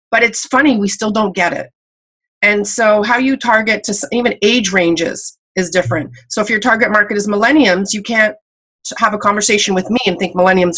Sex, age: female, 30-49